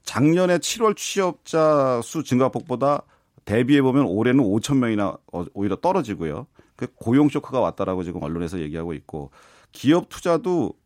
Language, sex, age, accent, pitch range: Korean, male, 40-59, native, 100-150 Hz